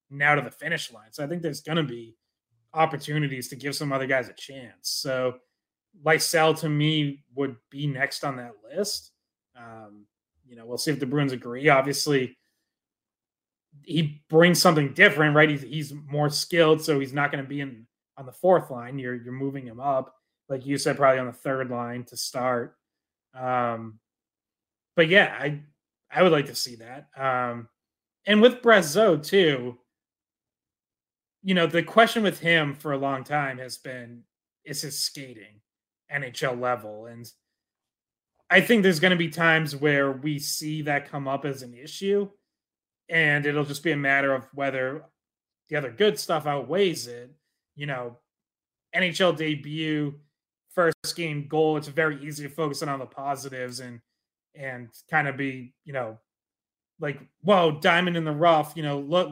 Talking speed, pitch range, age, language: 170 wpm, 125-160 Hz, 20-39, English